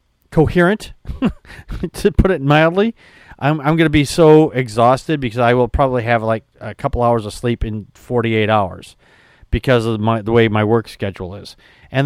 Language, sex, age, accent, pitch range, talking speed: English, male, 40-59, American, 115-145 Hz, 170 wpm